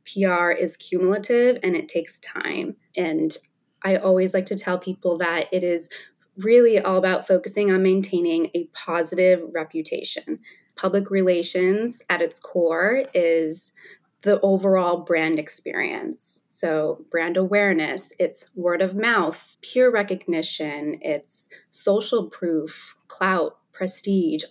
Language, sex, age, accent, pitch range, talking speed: English, female, 20-39, American, 170-210 Hz, 120 wpm